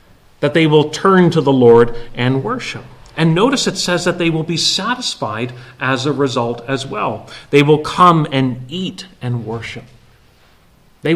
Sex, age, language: male, 40-59, English